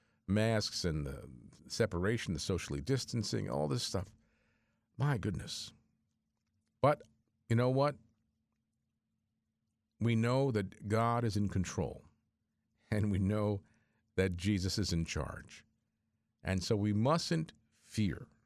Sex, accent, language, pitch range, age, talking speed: male, American, English, 100-115 Hz, 50-69, 115 wpm